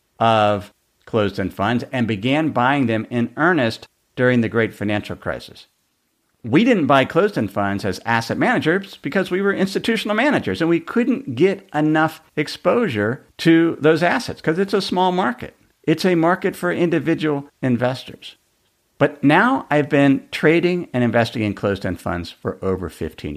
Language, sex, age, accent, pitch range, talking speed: English, male, 50-69, American, 105-155 Hz, 155 wpm